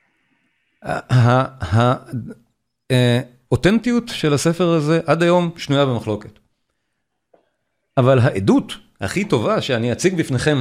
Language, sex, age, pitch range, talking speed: Hebrew, male, 40-59, 115-150 Hz, 90 wpm